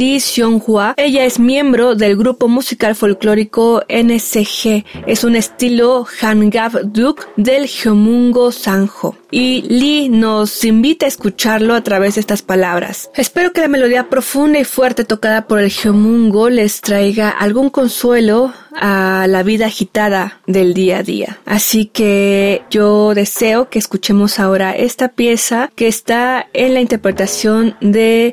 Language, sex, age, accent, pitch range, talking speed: Spanish, female, 20-39, Mexican, 210-250 Hz, 140 wpm